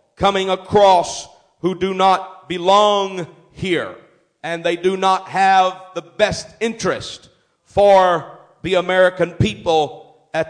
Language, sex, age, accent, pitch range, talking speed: English, male, 50-69, American, 175-220 Hz, 115 wpm